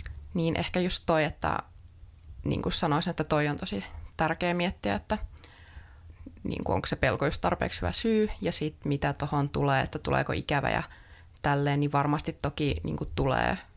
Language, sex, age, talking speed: Finnish, female, 30-49, 175 wpm